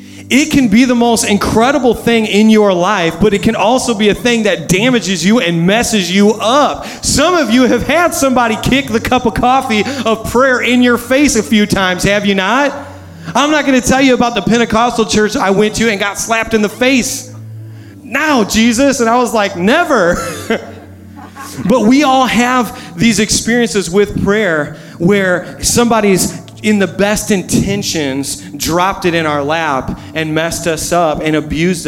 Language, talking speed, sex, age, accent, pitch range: English, 185 wpm, male, 30-49, American, 165-225 Hz